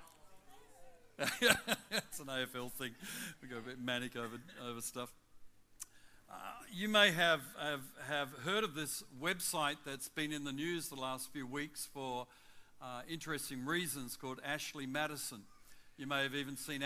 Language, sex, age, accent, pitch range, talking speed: English, male, 60-79, New Zealand, 130-160 Hz, 155 wpm